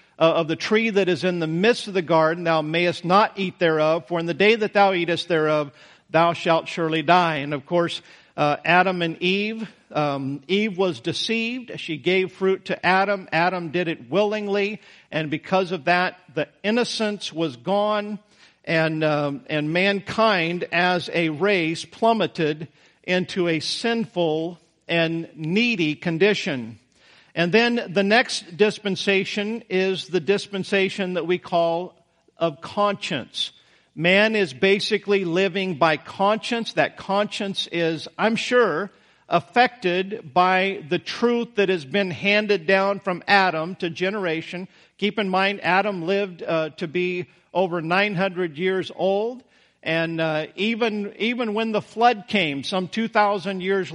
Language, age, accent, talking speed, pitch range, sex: English, 50-69, American, 145 wpm, 165-205 Hz, male